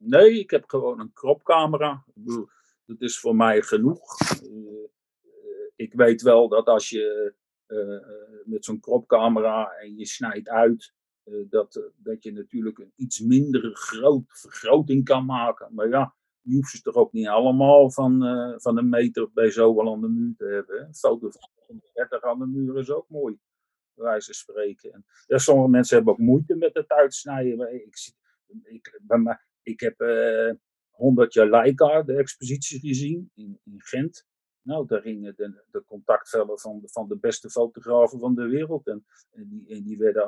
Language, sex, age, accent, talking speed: Dutch, male, 50-69, Dutch, 175 wpm